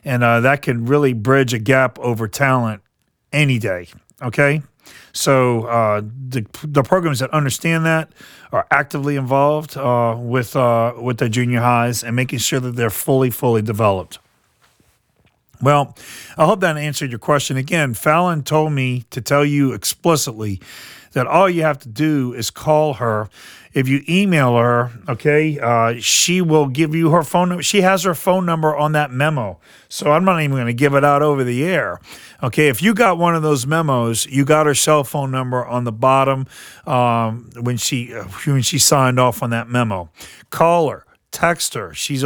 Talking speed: 180 wpm